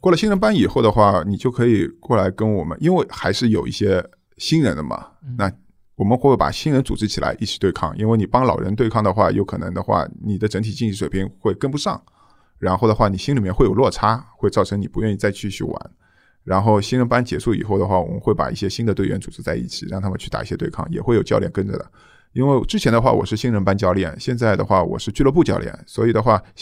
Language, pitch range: Chinese, 95-120 Hz